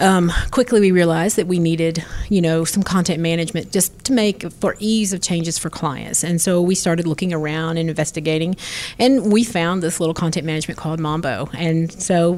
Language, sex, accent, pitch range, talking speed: English, female, American, 165-195 Hz, 195 wpm